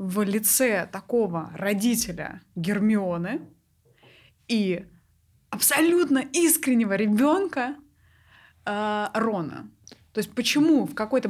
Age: 20-39